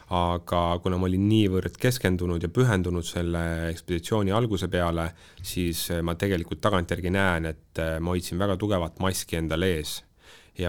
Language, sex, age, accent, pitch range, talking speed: English, male, 30-49, Finnish, 85-100 Hz, 140 wpm